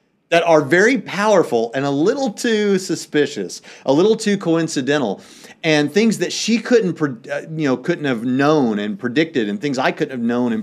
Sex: male